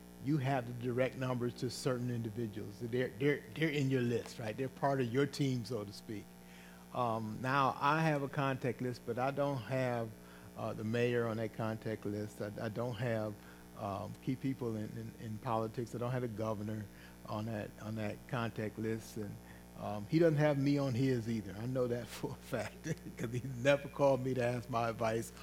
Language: English